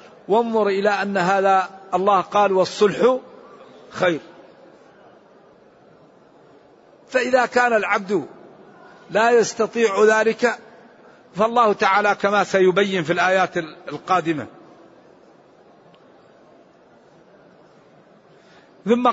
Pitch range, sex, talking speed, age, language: 200-230 Hz, male, 70 wpm, 50-69, English